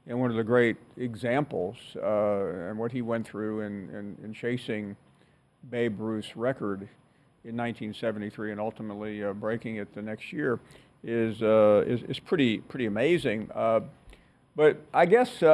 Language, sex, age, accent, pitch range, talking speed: English, male, 50-69, American, 115-150 Hz, 155 wpm